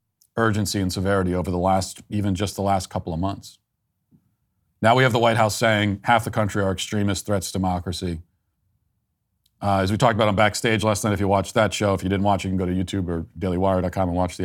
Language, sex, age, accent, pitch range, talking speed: English, male, 40-59, American, 95-125 Hz, 235 wpm